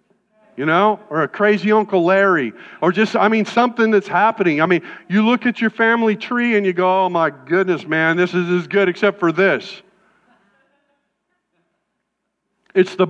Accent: American